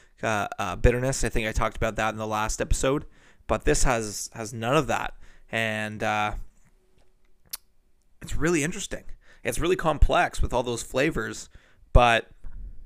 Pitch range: 110-135 Hz